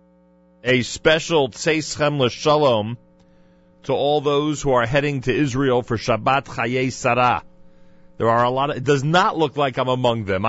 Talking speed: 165 wpm